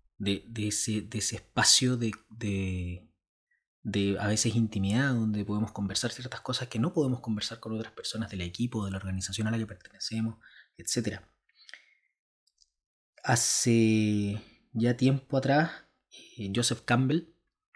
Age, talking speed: 20-39, 130 wpm